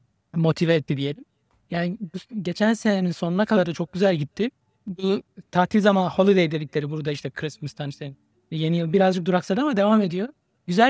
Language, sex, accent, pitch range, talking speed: Turkish, male, native, 160-205 Hz, 160 wpm